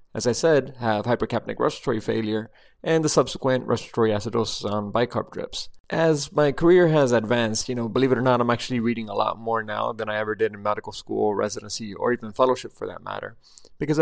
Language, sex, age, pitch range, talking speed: English, male, 30-49, 115-140 Hz, 205 wpm